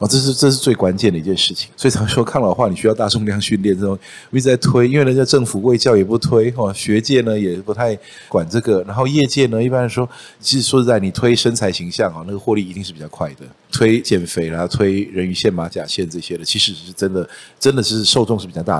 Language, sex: Chinese, male